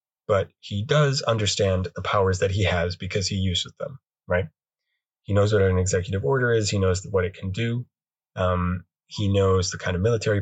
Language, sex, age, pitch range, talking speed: English, male, 20-39, 90-110 Hz, 195 wpm